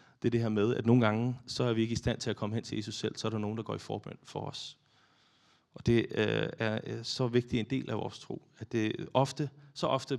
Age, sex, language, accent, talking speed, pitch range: 30-49, male, Danish, native, 285 wpm, 105-125 Hz